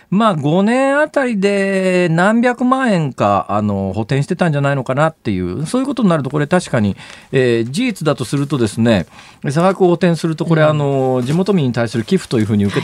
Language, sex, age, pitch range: Japanese, male, 40-59, 110-175 Hz